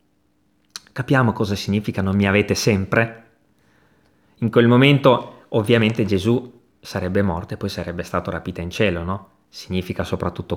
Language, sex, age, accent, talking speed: Italian, male, 30-49, native, 135 wpm